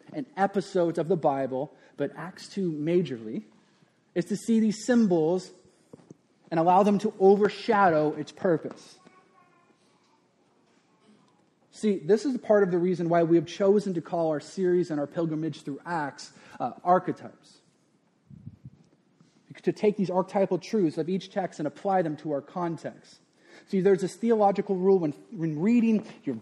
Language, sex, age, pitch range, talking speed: English, male, 30-49, 170-210 Hz, 150 wpm